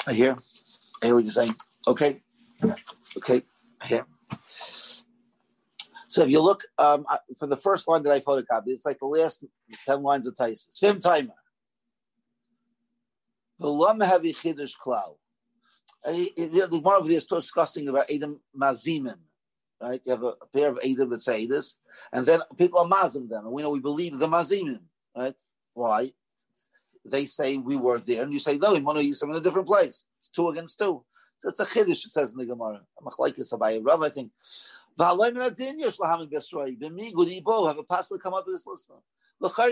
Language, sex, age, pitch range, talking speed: English, male, 50-69, 140-220 Hz, 180 wpm